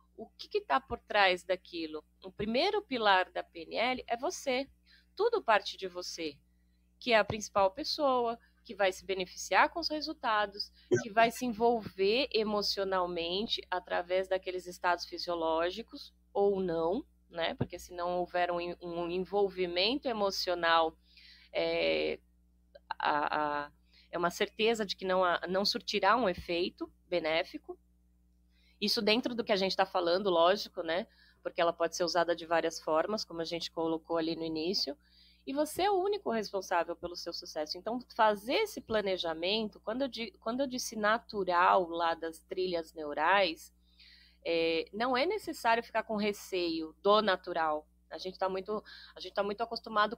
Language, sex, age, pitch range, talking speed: Portuguese, female, 20-39, 165-225 Hz, 150 wpm